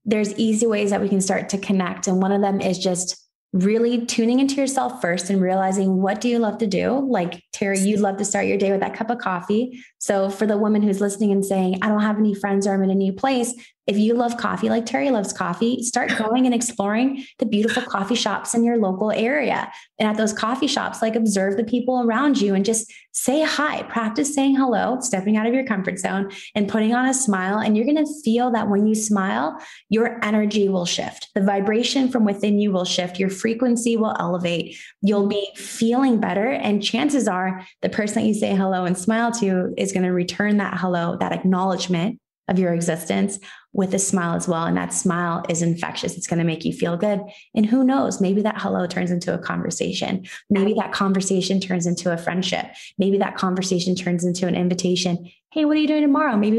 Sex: female